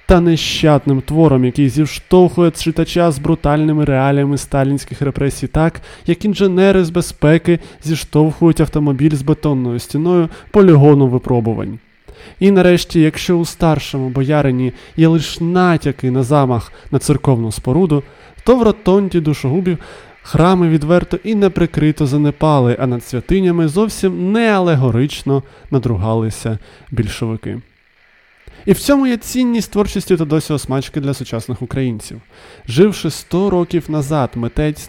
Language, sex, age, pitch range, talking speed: Ukrainian, male, 20-39, 135-175 Hz, 120 wpm